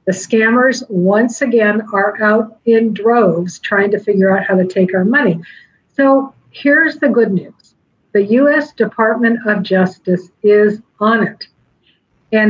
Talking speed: 150 wpm